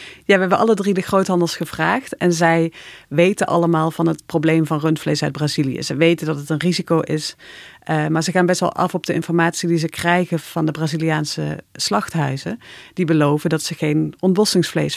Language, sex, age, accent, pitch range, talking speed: Dutch, female, 40-59, Dutch, 155-180 Hz, 190 wpm